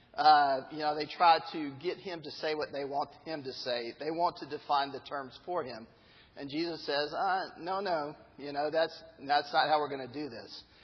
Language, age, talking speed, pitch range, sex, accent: English, 50-69, 225 wpm, 140-175 Hz, male, American